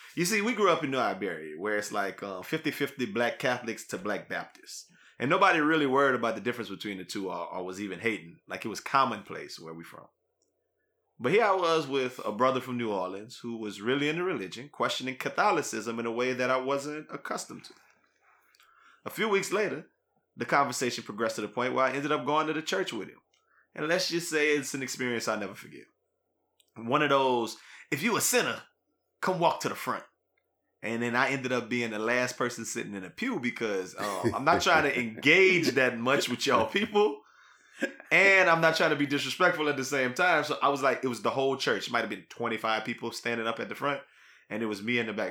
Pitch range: 115-150 Hz